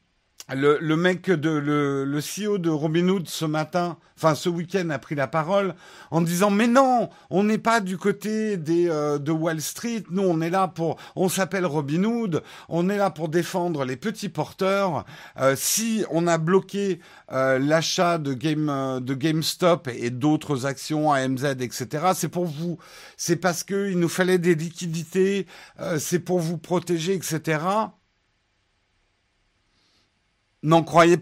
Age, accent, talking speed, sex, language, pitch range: 50-69, French, 165 wpm, male, French, 135-185 Hz